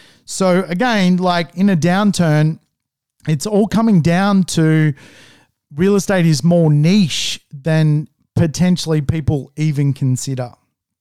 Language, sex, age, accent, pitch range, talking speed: English, male, 40-59, Australian, 155-205 Hz, 115 wpm